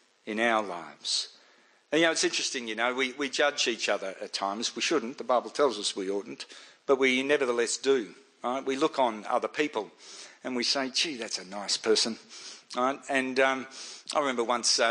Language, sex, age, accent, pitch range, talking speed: English, male, 60-79, Australian, 115-170 Hz, 195 wpm